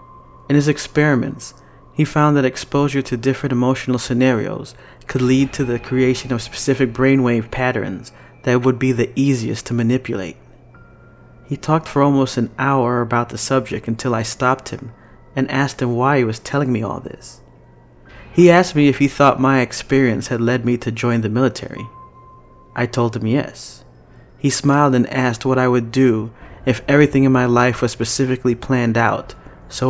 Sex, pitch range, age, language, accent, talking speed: male, 115-135 Hz, 30-49, English, American, 175 wpm